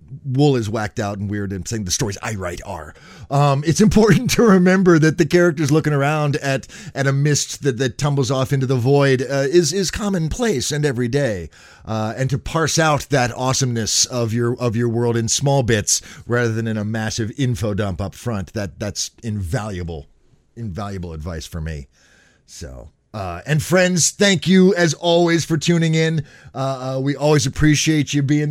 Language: English